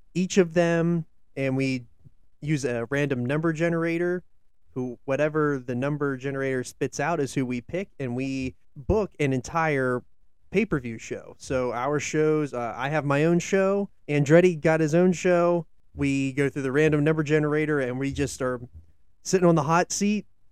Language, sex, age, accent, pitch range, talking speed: English, male, 20-39, American, 130-165 Hz, 170 wpm